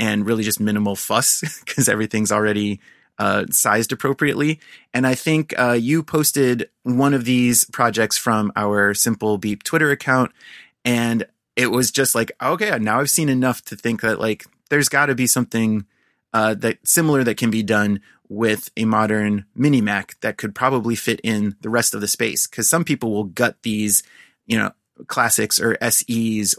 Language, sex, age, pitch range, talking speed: English, male, 30-49, 105-125 Hz, 180 wpm